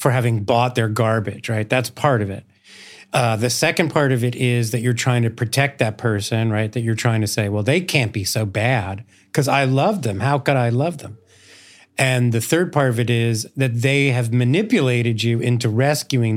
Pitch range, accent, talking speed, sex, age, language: 115-140 Hz, American, 215 wpm, male, 40-59, English